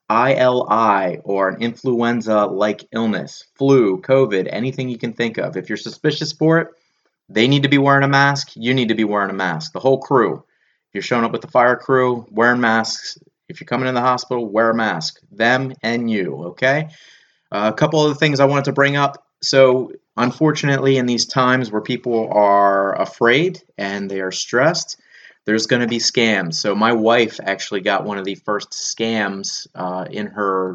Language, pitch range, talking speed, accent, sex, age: English, 105-130 Hz, 190 wpm, American, male, 30-49